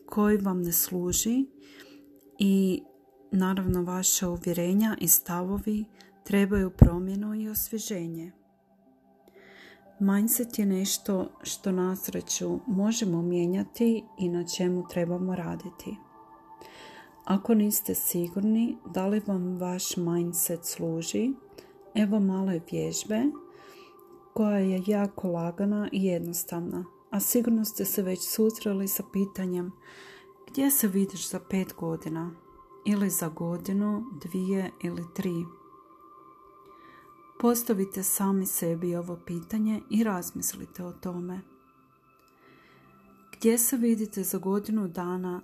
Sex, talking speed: female, 105 wpm